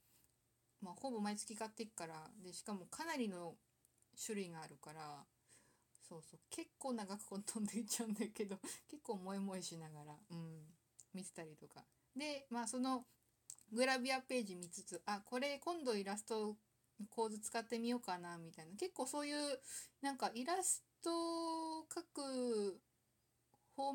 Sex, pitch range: female, 170-250 Hz